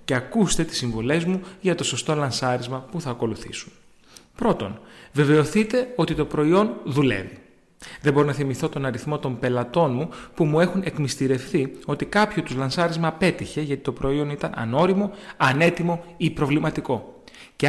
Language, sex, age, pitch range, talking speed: Greek, male, 30-49, 130-180 Hz, 155 wpm